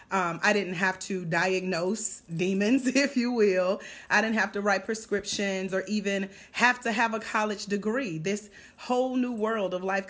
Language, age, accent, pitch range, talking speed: English, 30-49, American, 175-215 Hz, 180 wpm